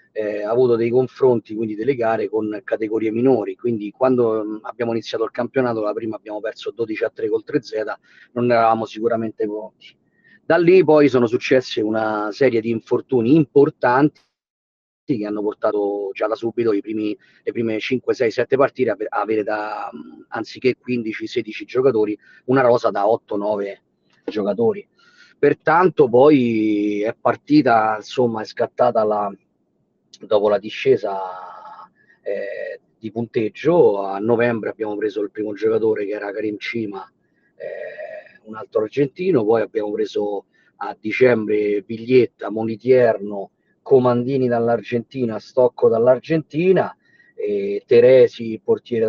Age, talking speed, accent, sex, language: 40-59, 135 wpm, native, male, Italian